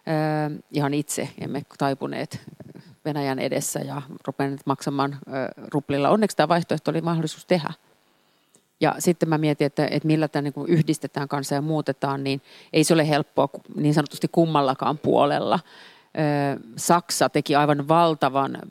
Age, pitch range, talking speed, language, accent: 40-59, 140-160 Hz, 125 wpm, Finnish, native